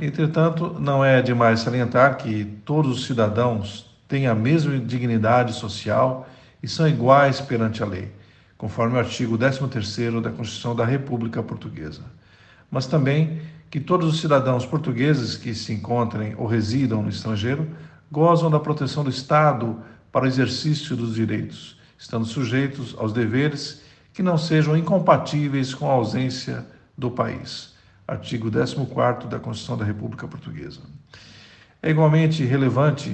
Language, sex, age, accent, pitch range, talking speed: Portuguese, male, 50-69, Brazilian, 115-145 Hz, 140 wpm